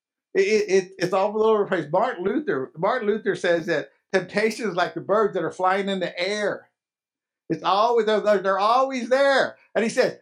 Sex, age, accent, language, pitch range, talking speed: male, 50-69, American, English, 190-260 Hz, 195 wpm